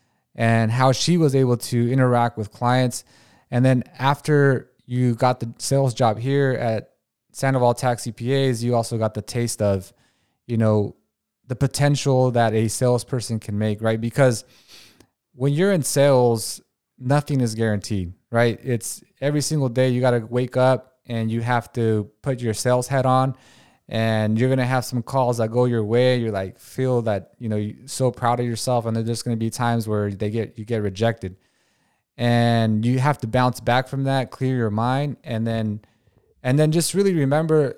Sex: male